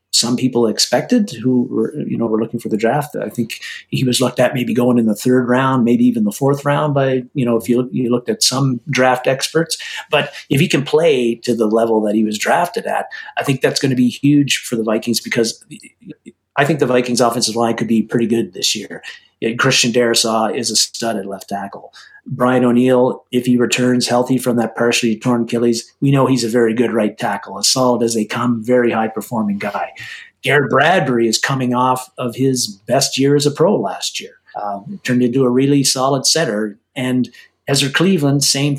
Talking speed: 210 wpm